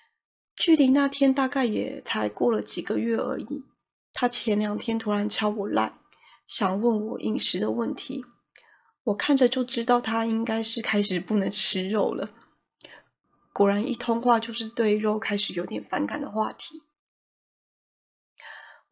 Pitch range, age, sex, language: 210-255 Hz, 20-39, female, Chinese